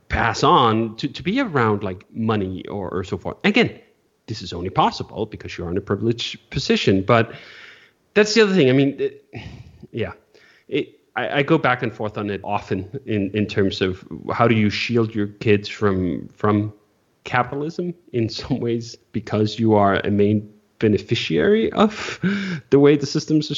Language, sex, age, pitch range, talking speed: English, male, 30-49, 100-125 Hz, 180 wpm